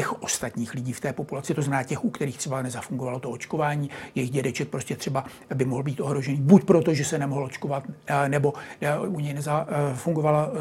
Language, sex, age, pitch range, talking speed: Czech, male, 60-79, 145-175 Hz, 185 wpm